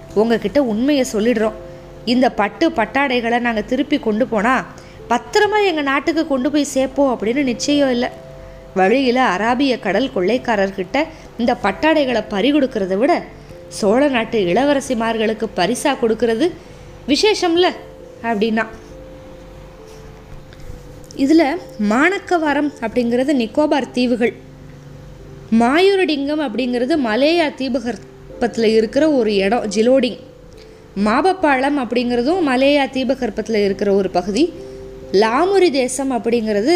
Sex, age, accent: female, 20-39, native